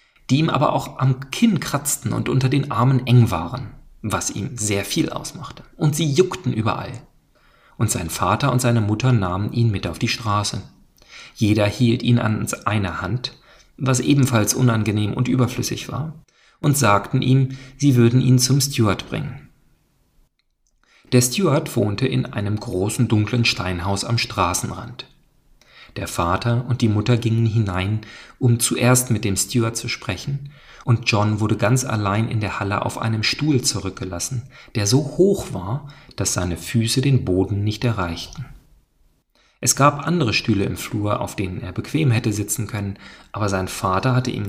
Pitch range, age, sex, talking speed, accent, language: 105-130 Hz, 40-59, male, 160 wpm, German, German